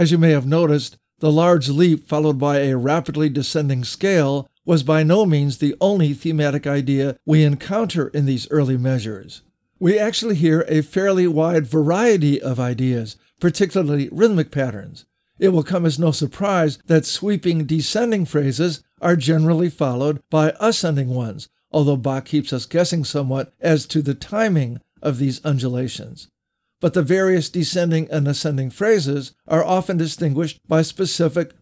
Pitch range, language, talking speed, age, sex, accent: 140-175 Hz, English, 155 wpm, 50-69, male, American